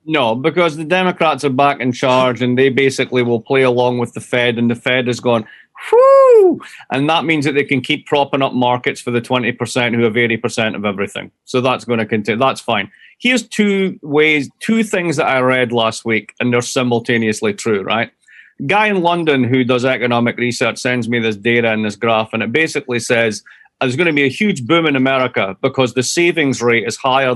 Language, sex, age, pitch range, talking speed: English, male, 30-49, 120-155 Hz, 210 wpm